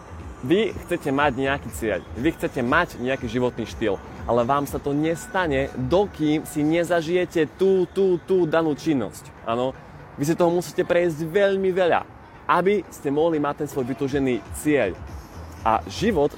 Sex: male